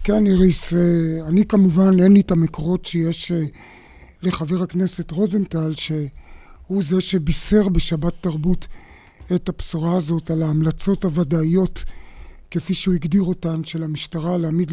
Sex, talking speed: male, 120 wpm